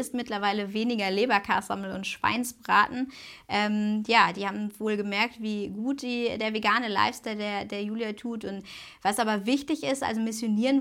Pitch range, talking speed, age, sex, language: 185-230 Hz, 160 wpm, 20-39, female, German